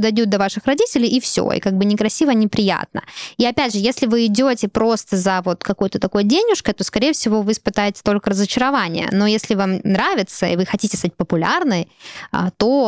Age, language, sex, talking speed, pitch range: 20-39, Russian, female, 185 wpm, 190-245 Hz